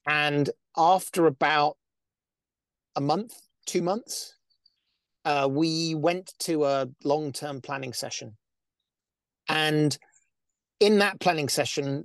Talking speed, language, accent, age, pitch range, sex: 105 wpm, English, British, 40-59, 140-170 Hz, male